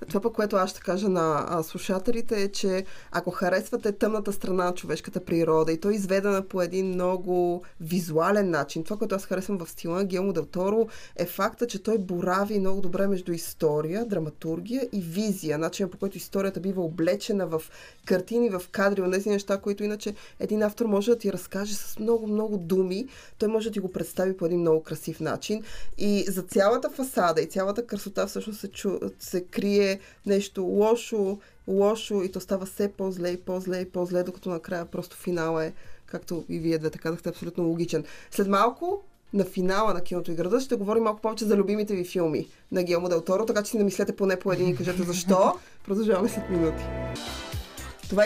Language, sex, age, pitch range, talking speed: Bulgarian, female, 20-39, 180-215 Hz, 185 wpm